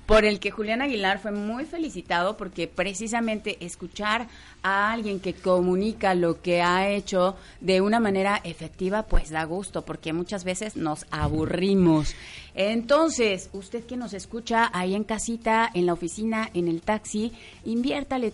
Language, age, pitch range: Spanish, 30-49, 175-225 Hz